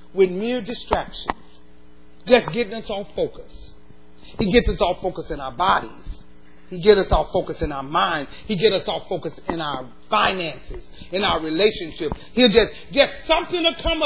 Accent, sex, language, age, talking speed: American, male, English, 40-59, 175 wpm